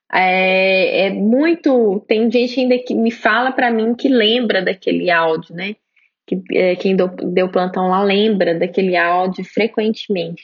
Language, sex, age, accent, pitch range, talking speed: Portuguese, female, 20-39, Brazilian, 195-255 Hz, 155 wpm